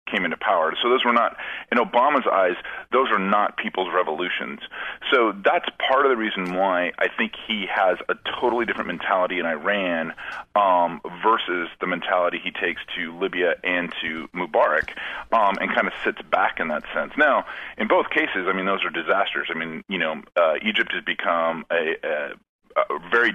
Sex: male